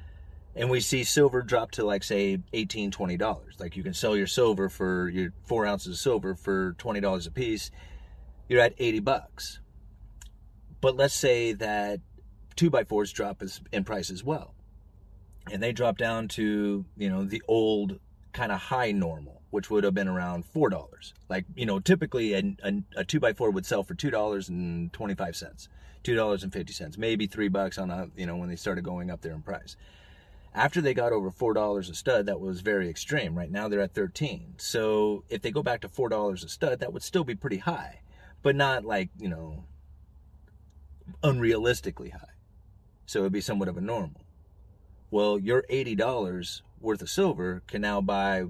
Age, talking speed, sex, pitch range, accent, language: 30-49, 195 wpm, male, 90-110 Hz, American, English